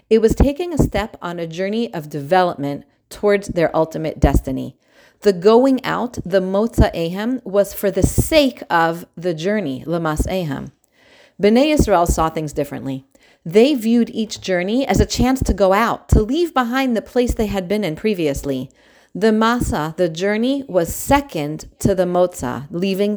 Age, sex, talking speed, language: 40-59, female, 165 wpm, English